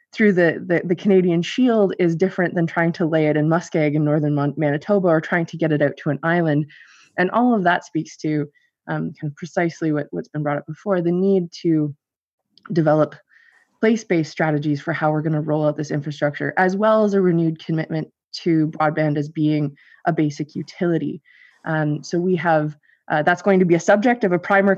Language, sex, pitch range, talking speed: English, female, 155-185 Hz, 205 wpm